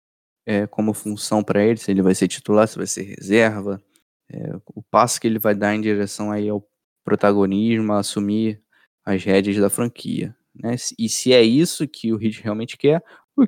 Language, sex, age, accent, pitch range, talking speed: Portuguese, male, 10-29, Brazilian, 105-130 Hz, 190 wpm